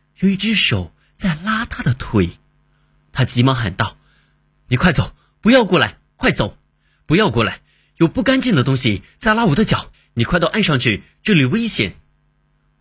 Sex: male